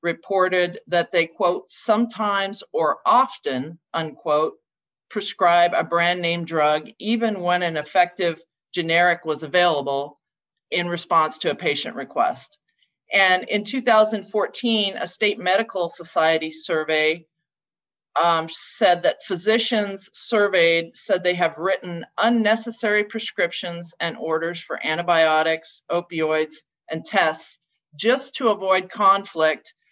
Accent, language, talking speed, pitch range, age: American, English, 110 wpm, 170-225 Hz, 40-59